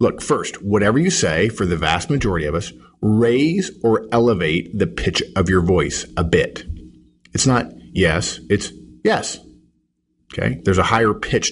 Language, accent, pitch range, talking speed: English, American, 80-110 Hz, 160 wpm